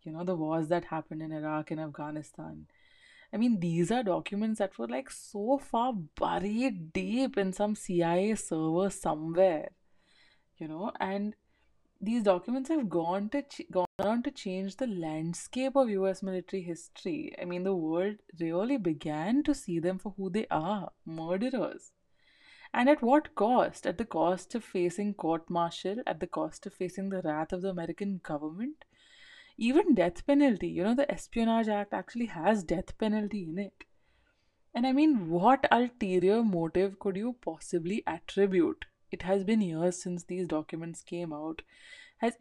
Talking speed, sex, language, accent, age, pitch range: 165 wpm, female, English, Indian, 20-39, 170-225 Hz